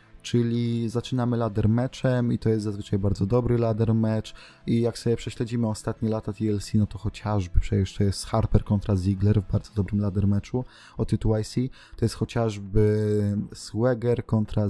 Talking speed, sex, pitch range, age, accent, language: 165 wpm, male, 100-115 Hz, 20-39, native, Polish